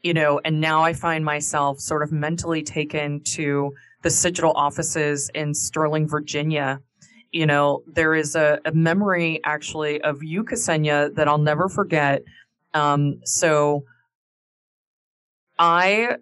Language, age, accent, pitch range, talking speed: English, 20-39, American, 150-175 Hz, 135 wpm